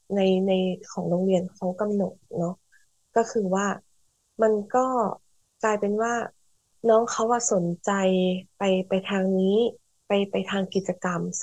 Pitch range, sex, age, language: 190-225 Hz, female, 20-39, Thai